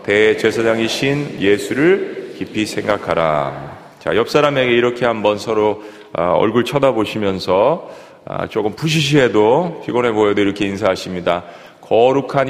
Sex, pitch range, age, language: male, 105-130 Hz, 40-59, Korean